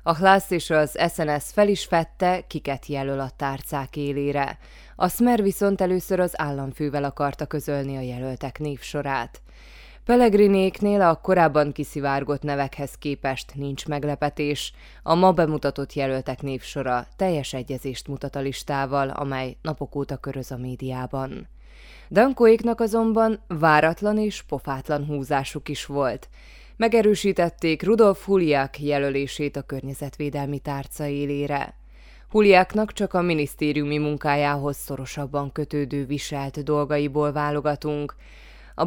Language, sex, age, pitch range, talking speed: Hungarian, female, 20-39, 140-165 Hz, 115 wpm